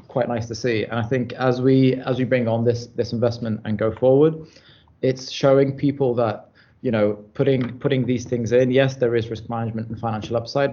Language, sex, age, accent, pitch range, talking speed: English, male, 20-39, British, 110-125 Hz, 215 wpm